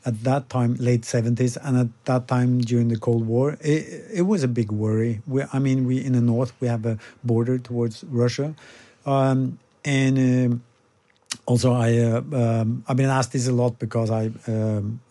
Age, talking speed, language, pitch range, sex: 50-69, 190 wpm, English, 110-130 Hz, male